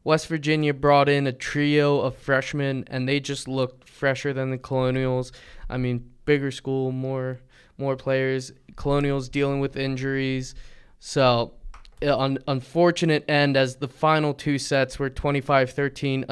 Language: English